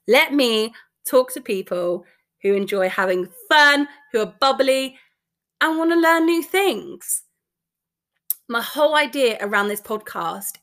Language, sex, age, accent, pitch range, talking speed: English, female, 20-39, British, 215-325 Hz, 135 wpm